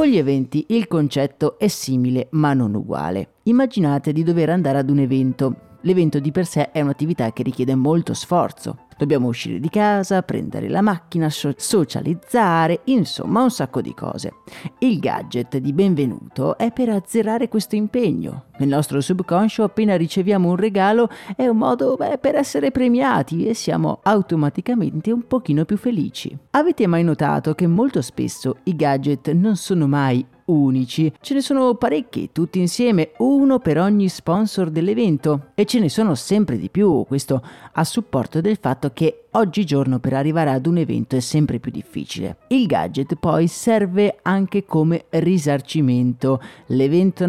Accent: native